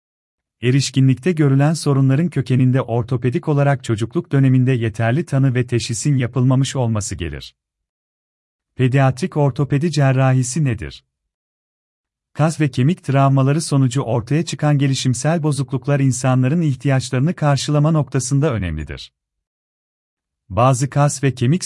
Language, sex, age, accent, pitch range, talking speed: Turkish, male, 40-59, native, 115-145 Hz, 105 wpm